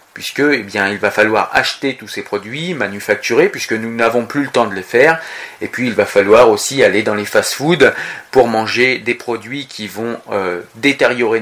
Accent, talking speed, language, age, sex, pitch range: French, 200 wpm, French, 40-59, male, 115-150 Hz